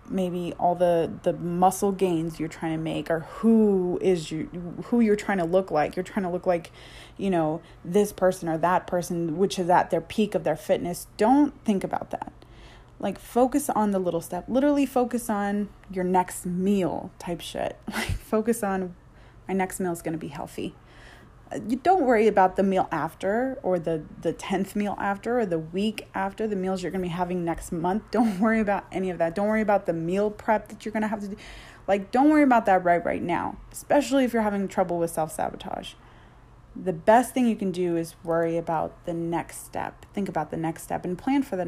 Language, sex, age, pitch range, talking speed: English, female, 20-39, 175-220 Hz, 215 wpm